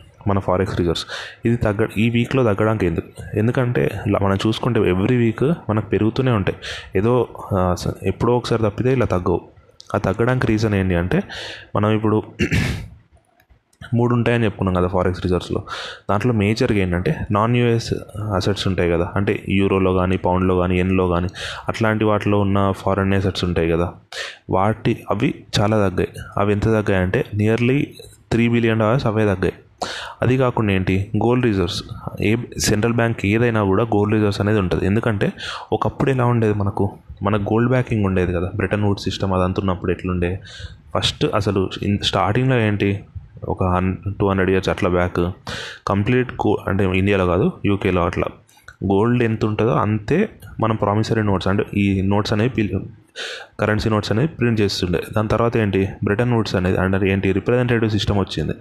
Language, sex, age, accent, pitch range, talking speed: Telugu, male, 20-39, native, 95-115 Hz, 150 wpm